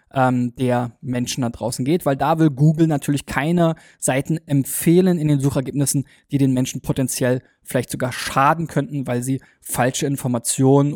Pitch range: 140-165 Hz